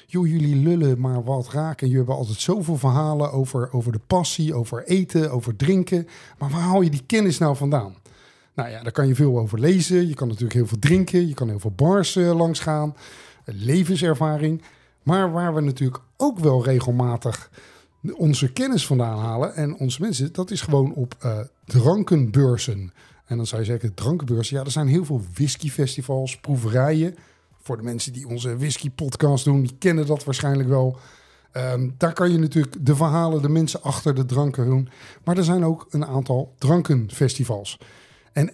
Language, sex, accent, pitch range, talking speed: Dutch, male, Dutch, 125-160 Hz, 175 wpm